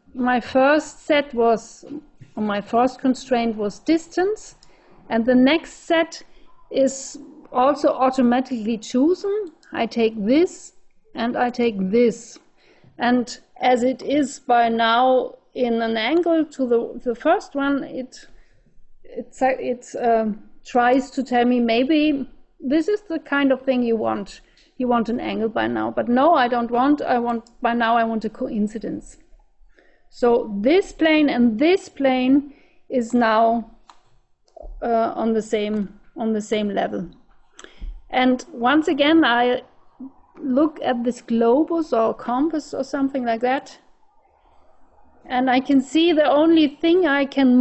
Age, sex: 50-69, female